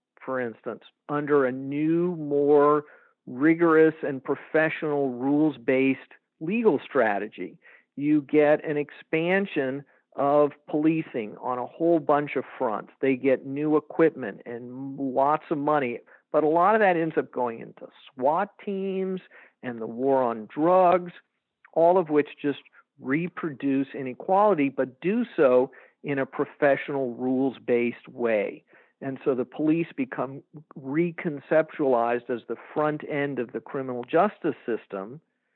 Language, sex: English, male